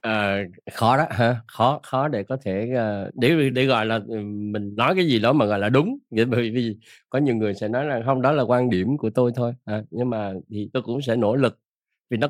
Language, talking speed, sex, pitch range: Vietnamese, 250 wpm, male, 110-145 Hz